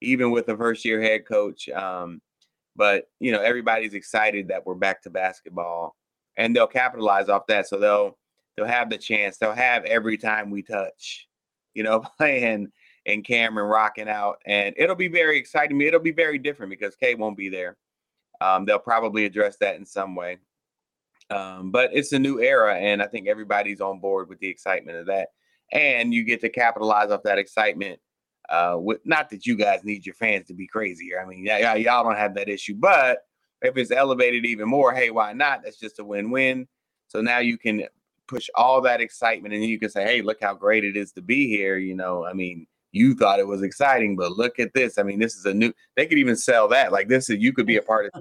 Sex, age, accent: male, 30-49, American